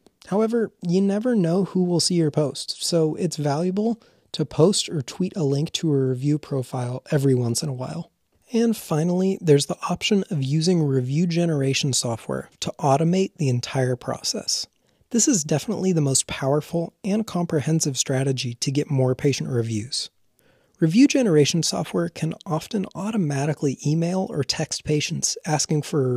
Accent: American